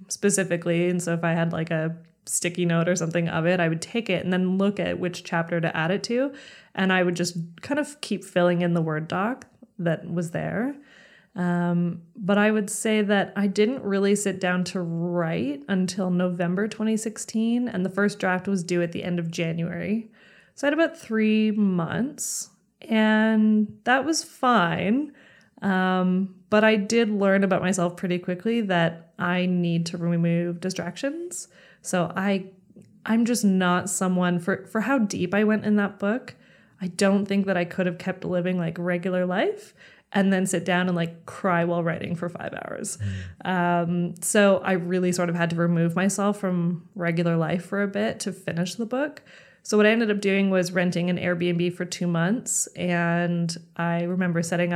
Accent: American